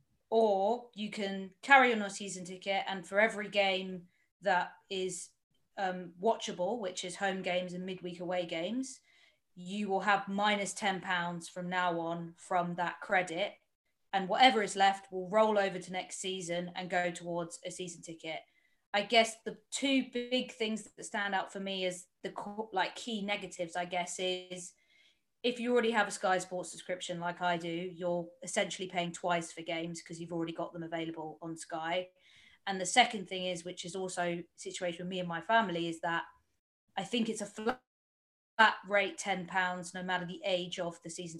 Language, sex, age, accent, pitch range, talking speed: English, female, 20-39, British, 180-205 Hz, 185 wpm